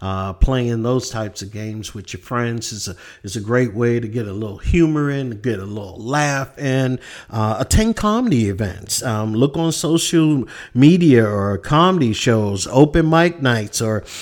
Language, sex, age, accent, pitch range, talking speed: English, male, 50-69, American, 105-130 Hz, 175 wpm